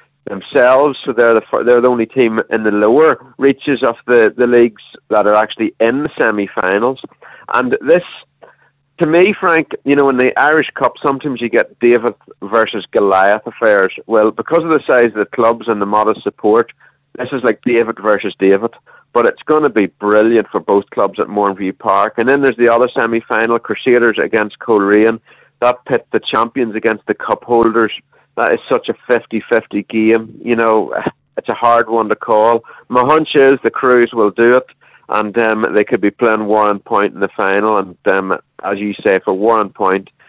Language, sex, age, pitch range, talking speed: English, male, 30-49, 110-130 Hz, 190 wpm